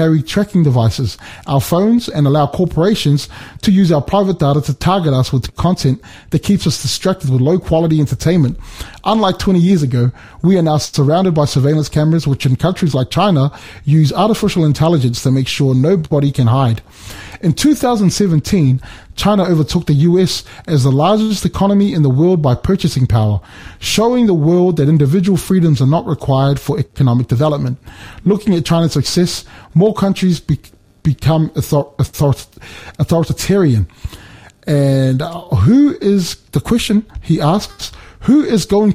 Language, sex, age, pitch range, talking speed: English, male, 20-39, 130-185 Hz, 150 wpm